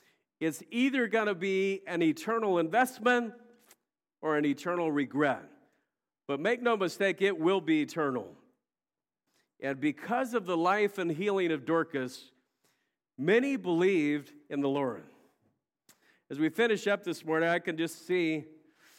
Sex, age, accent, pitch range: male, 50-69, American, 155-210 Hz